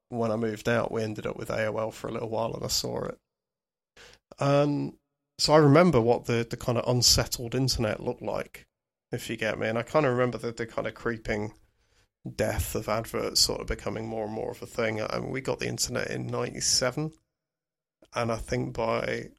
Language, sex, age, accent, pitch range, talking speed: English, male, 30-49, British, 115-130 Hz, 205 wpm